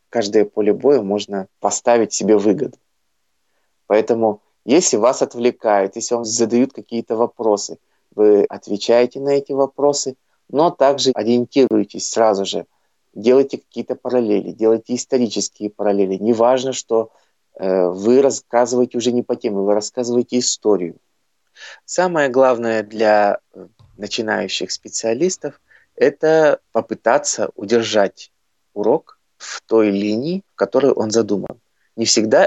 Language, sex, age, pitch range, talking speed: Russian, male, 30-49, 105-135 Hz, 115 wpm